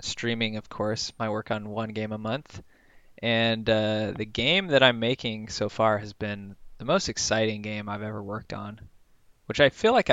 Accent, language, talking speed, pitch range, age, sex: American, English, 195 wpm, 105-120 Hz, 20-39, male